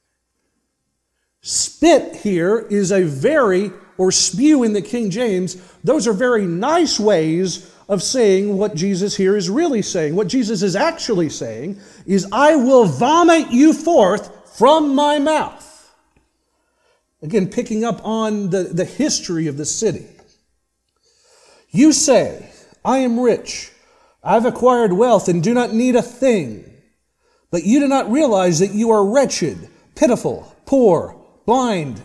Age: 40-59